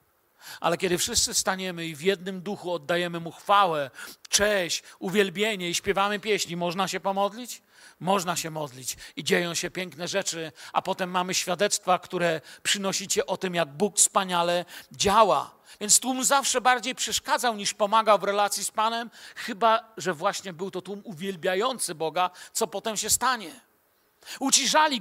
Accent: native